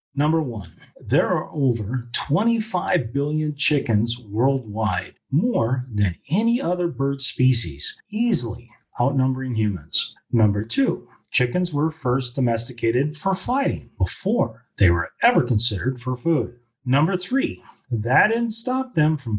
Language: English